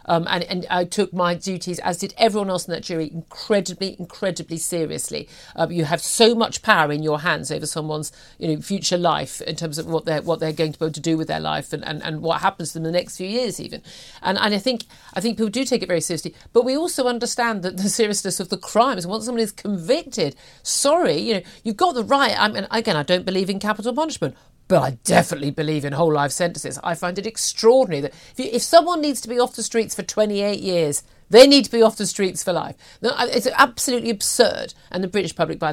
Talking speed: 245 wpm